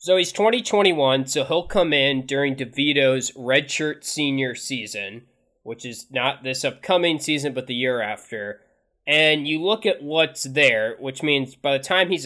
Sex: male